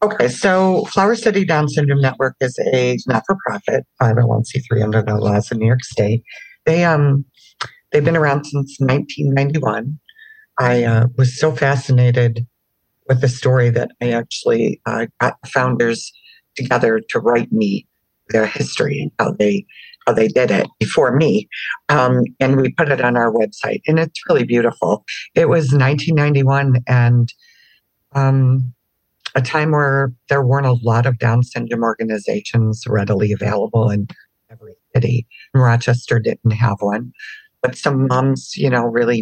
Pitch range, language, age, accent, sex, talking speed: 115-145 Hz, English, 60-79, American, female, 155 wpm